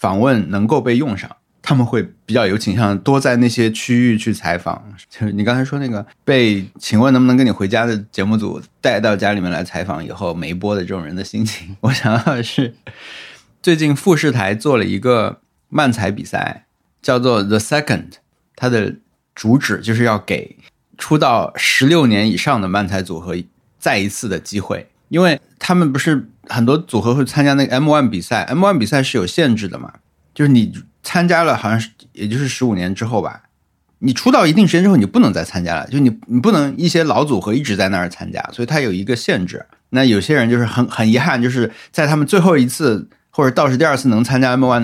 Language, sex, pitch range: Chinese, male, 105-135 Hz